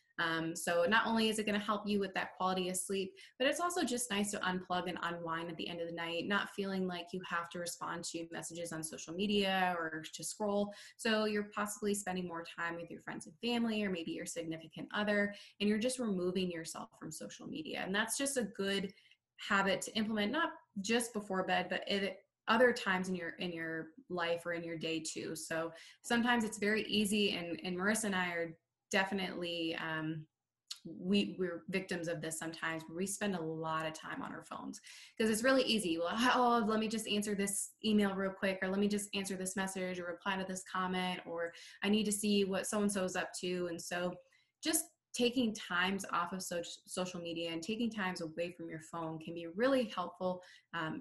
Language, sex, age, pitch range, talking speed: English, female, 20-39, 170-210 Hz, 210 wpm